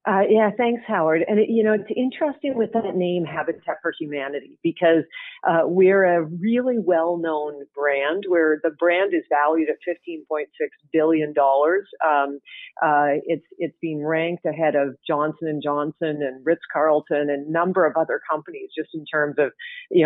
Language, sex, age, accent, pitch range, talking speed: English, female, 50-69, American, 160-205 Hz, 165 wpm